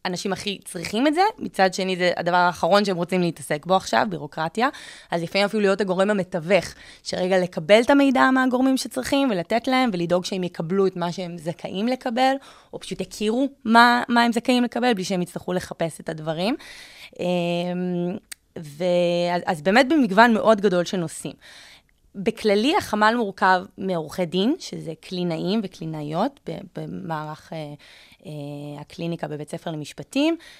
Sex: female